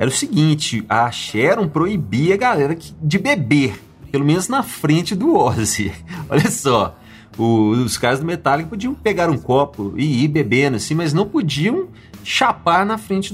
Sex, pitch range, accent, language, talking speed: male, 135-205 Hz, Brazilian, Portuguese, 165 wpm